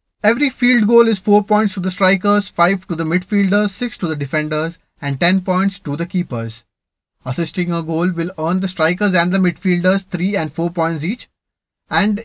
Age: 20-39